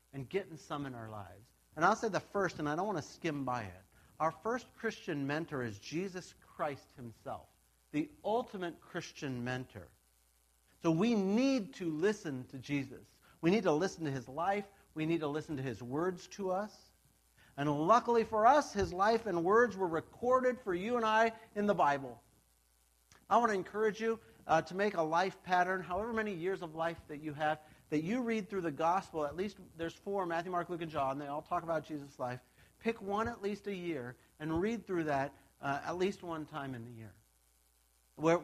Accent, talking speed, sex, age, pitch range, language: American, 205 wpm, male, 50-69, 130-195 Hz, English